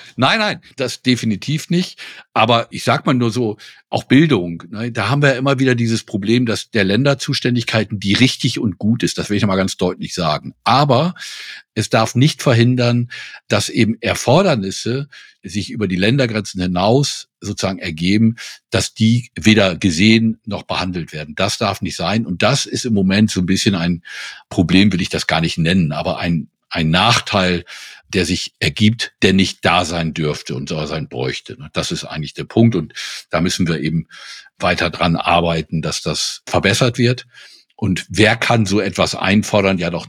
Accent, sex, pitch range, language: German, male, 85-120 Hz, German